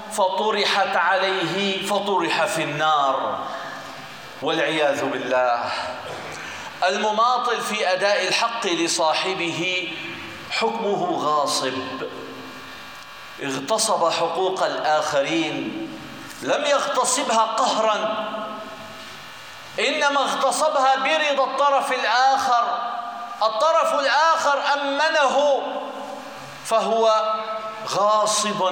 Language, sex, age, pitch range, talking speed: Arabic, male, 50-69, 185-245 Hz, 65 wpm